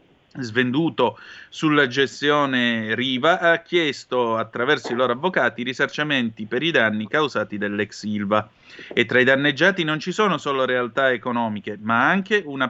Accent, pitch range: native, 110-155 Hz